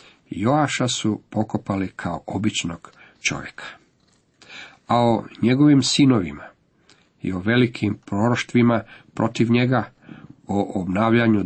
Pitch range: 95-120 Hz